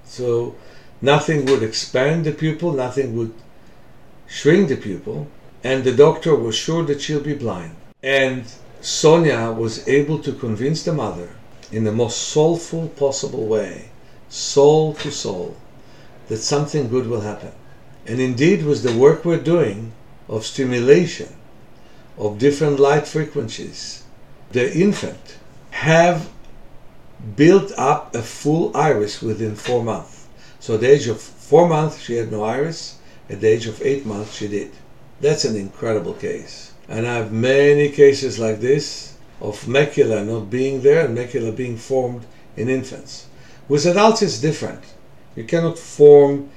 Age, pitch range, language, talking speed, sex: 60-79, 110-145 Hz, English, 145 wpm, male